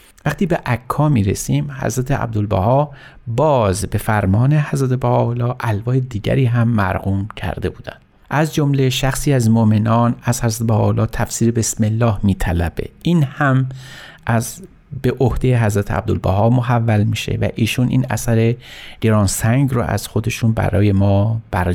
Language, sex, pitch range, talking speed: Persian, male, 105-130 Hz, 145 wpm